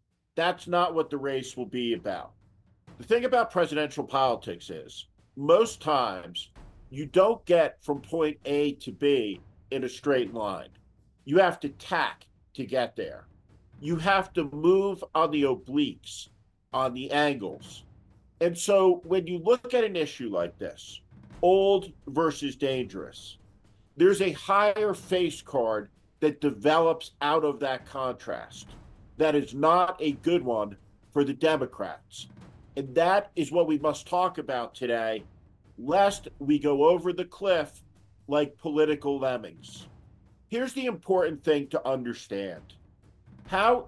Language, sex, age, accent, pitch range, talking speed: English, male, 50-69, American, 115-180 Hz, 140 wpm